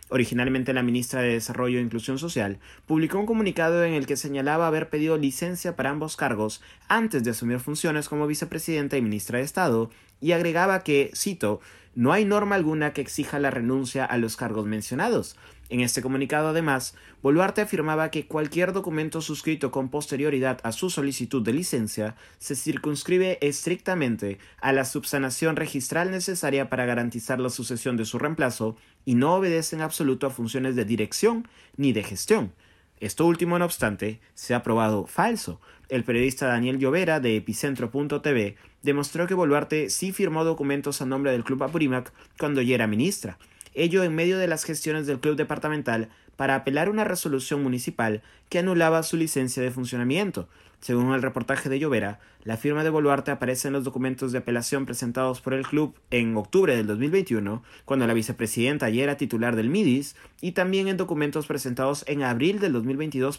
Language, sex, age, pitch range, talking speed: Spanish, male, 30-49, 120-155 Hz, 170 wpm